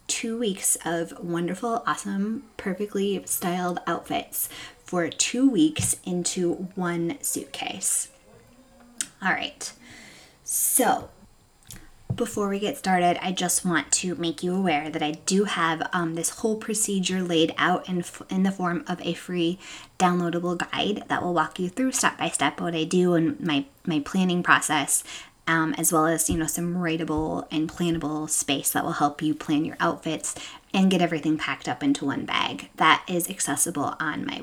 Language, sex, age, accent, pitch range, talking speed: English, female, 20-39, American, 160-200 Hz, 165 wpm